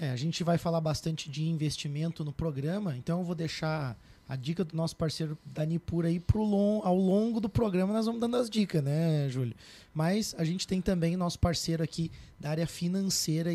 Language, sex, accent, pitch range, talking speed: Portuguese, male, Brazilian, 155-175 Hz, 185 wpm